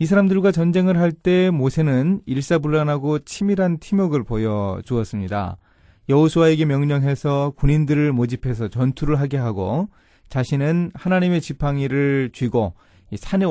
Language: Korean